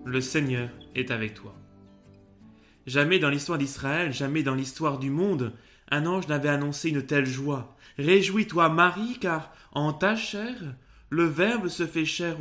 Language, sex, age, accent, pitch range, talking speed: French, male, 20-39, French, 135-180 Hz, 155 wpm